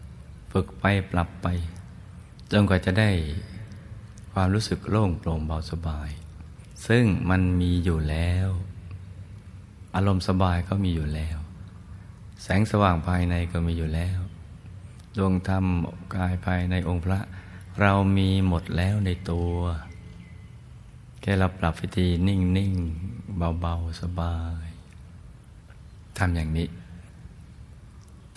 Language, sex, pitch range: Thai, male, 85-95 Hz